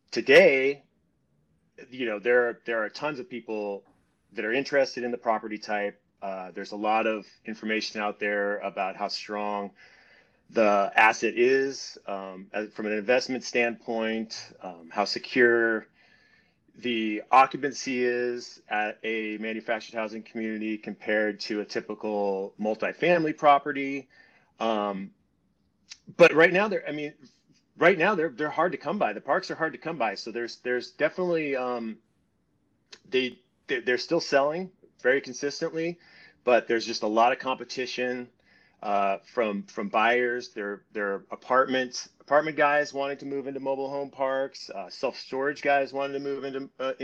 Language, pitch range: English, 110-140 Hz